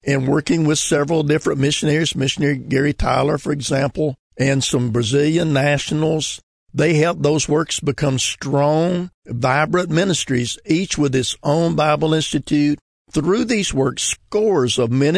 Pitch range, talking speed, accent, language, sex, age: 130-160 Hz, 140 wpm, American, English, male, 50-69